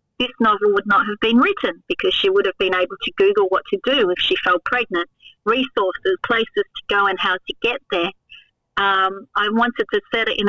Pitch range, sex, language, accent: 195-255 Hz, female, English, Australian